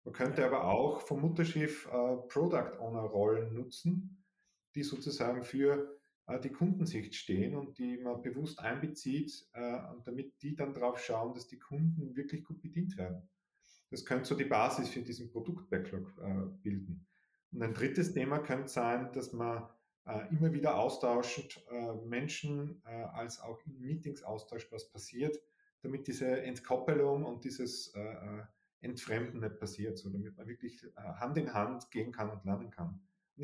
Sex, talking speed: male, 155 wpm